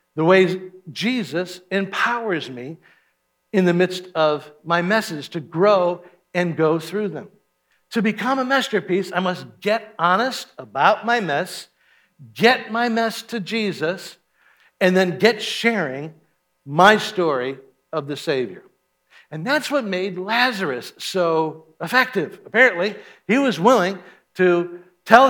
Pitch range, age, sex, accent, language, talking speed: 155-225 Hz, 60-79, male, American, English, 130 wpm